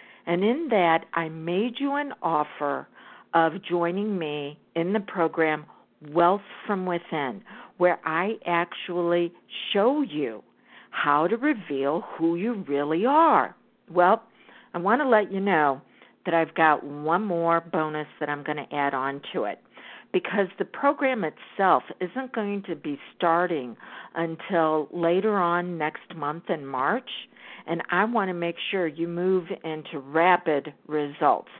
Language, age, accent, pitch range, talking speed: English, 50-69, American, 160-230 Hz, 145 wpm